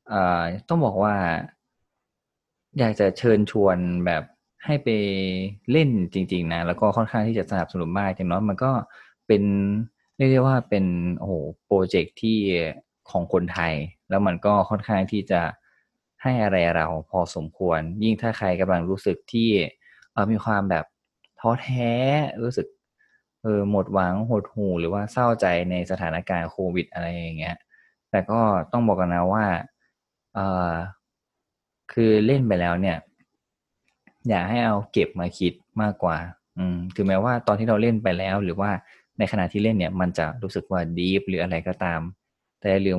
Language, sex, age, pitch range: Thai, male, 20-39, 90-110 Hz